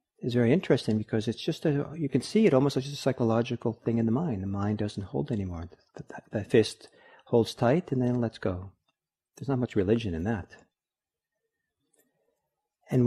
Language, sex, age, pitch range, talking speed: English, male, 50-69, 105-130 Hz, 190 wpm